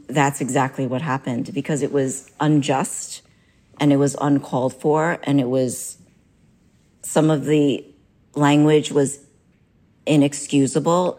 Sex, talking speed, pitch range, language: female, 120 wpm, 130-150 Hz, English